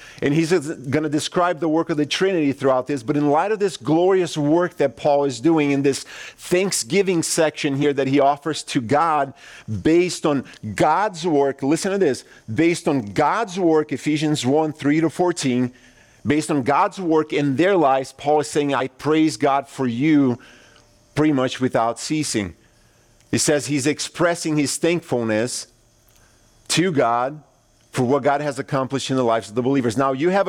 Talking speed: 175 wpm